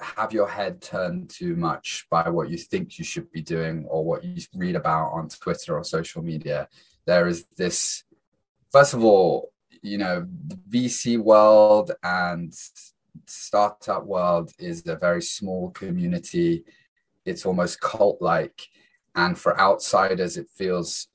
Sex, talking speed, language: male, 140 wpm, English